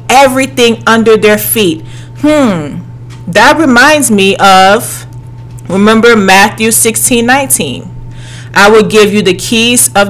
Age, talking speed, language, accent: 30-49, 120 wpm, English, American